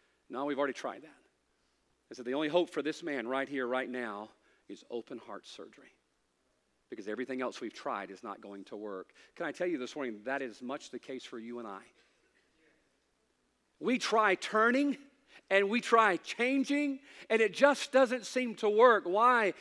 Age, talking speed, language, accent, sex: 40-59, 185 wpm, English, American, male